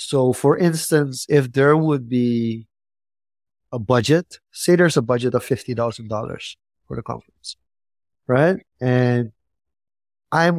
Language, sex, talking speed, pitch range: English, male, 120 wpm, 100-140 Hz